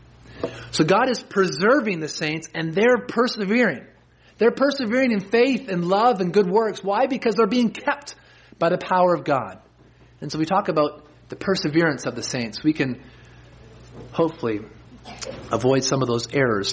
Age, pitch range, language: 30-49, 110-175 Hz, English